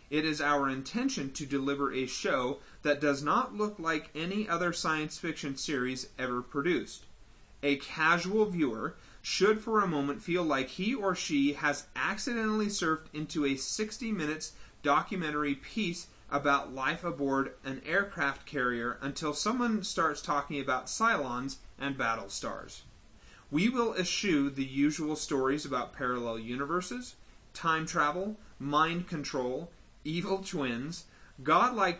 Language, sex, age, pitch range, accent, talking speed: English, male, 30-49, 130-175 Hz, American, 135 wpm